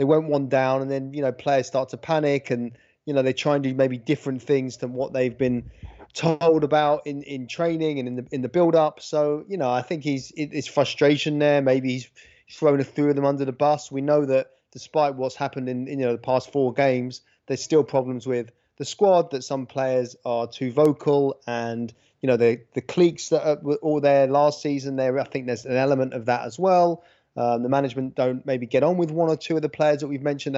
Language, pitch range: English, 130-150 Hz